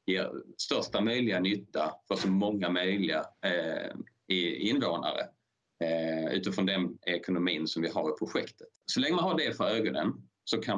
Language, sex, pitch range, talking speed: Swedish, male, 90-105 Hz, 155 wpm